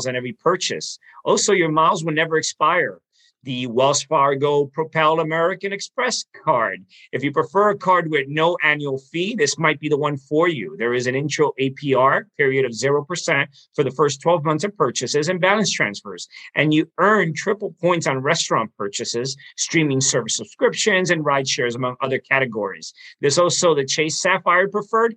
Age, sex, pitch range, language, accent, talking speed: 50-69, male, 135-175 Hz, English, American, 175 wpm